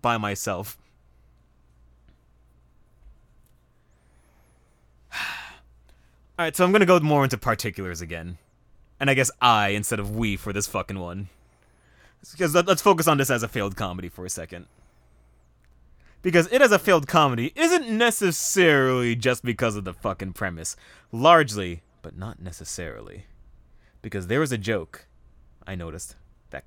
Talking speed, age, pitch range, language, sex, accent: 135 wpm, 30-49, 80-120 Hz, English, male, American